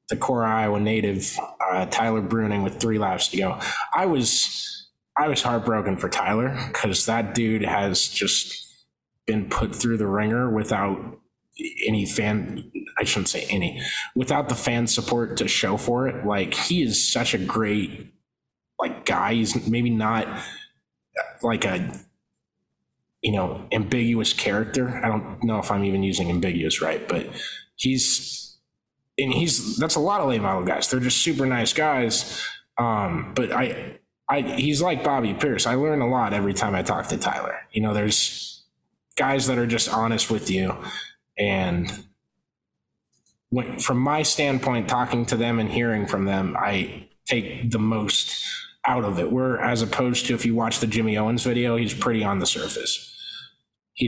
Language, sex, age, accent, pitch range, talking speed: English, male, 20-39, American, 105-125 Hz, 165 wpm